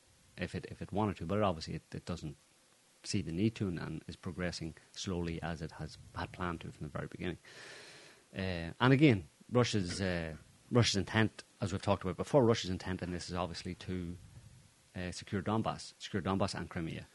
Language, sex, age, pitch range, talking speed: English, male, 30-49, 80-105 Hz, 195 wpm